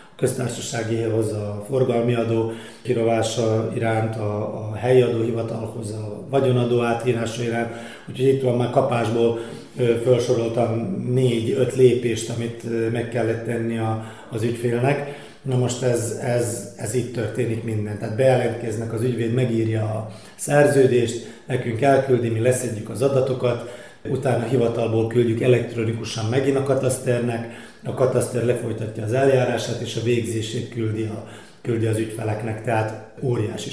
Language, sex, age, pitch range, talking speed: Hungarian, male, 30-49, 115-125 Hz, 130 wpm